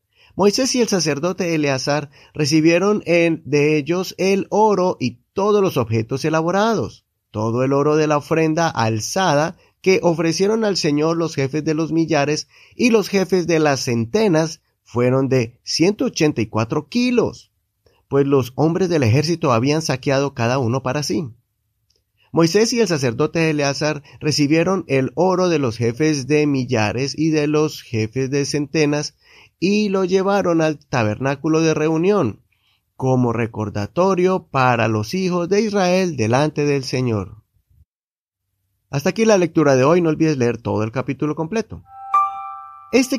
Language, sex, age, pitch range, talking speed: Spanish, male, 30-49, 125-175 Hz, 140 wpm